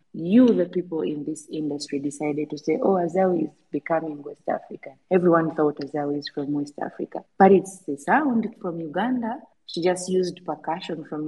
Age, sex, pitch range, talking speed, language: 30-49, female, 150-180 Hz, 175 wpm, English